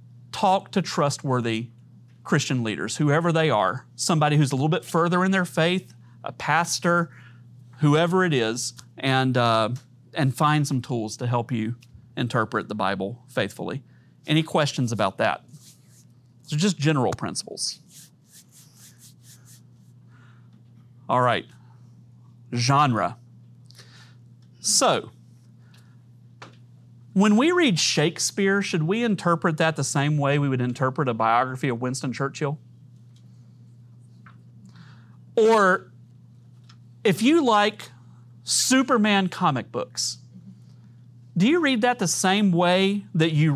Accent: American